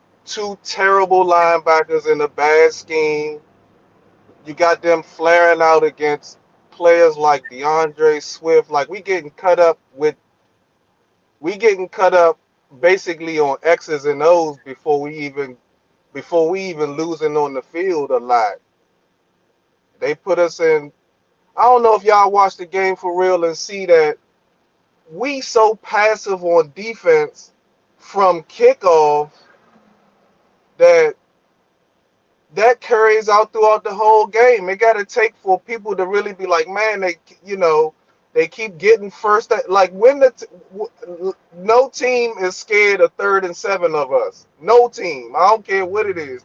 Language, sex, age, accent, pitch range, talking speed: English, male, 30-49, American, 170-250 Hz, 150 wpm